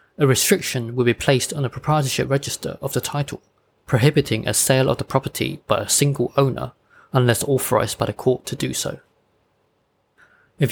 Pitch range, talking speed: 120-145 Hz, 175 wpm